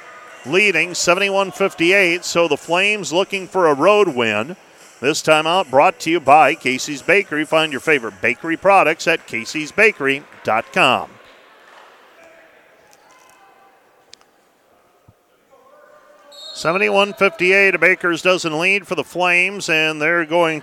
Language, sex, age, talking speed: English, male, 40-59, 110 wpm